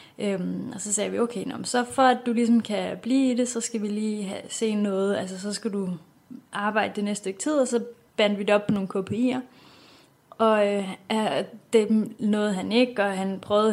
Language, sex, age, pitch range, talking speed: English, female, 20-39, 190-220 Hz, 215 wpm